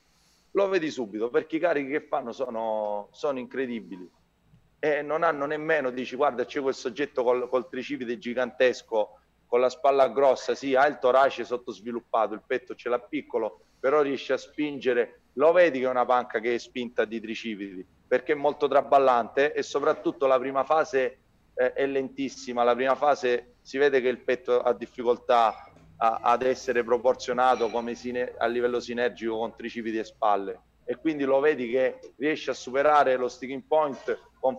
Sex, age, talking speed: male, 30-49, 170 wpm